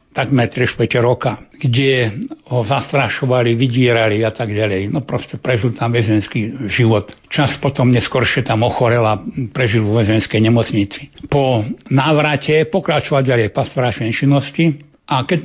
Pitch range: 120-140 Hz